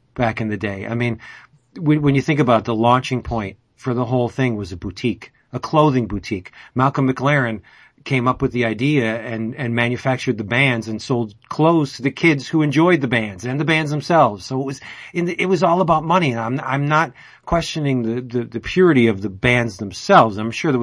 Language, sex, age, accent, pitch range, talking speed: English, male, 40-59, American, 115-140 Hz, 220 wpm